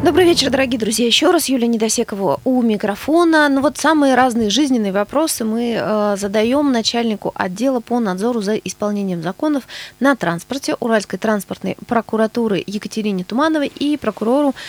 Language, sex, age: Russian, female, 20-39